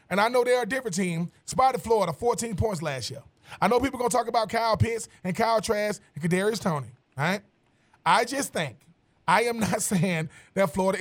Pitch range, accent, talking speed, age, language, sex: 175-230 Hz, American, 215 wpm, 20-39, English, male